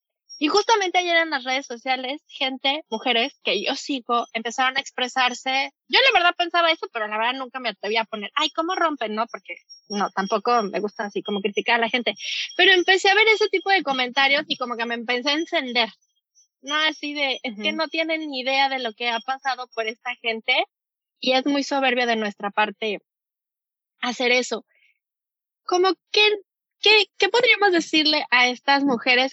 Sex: female